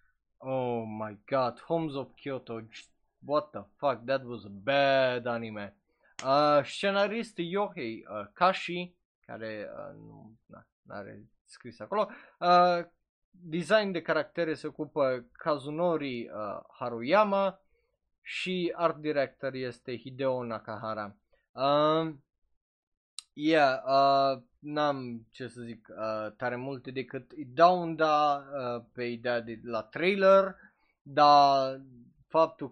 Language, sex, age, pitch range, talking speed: Romanian, male, 20-39, 125-170 Hz, 115 wpm